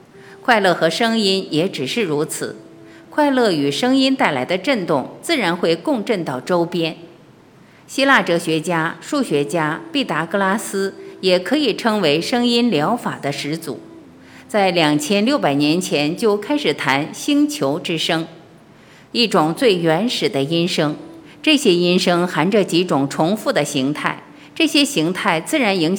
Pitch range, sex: 155-230 Hz, female